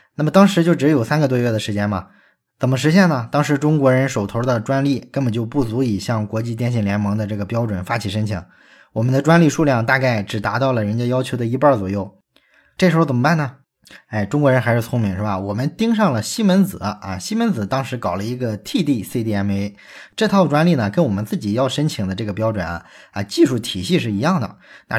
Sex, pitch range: male, 105-145 Hz